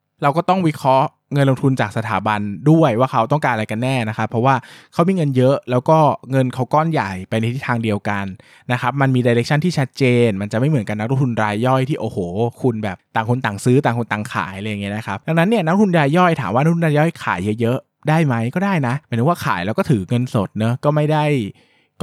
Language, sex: Thai, male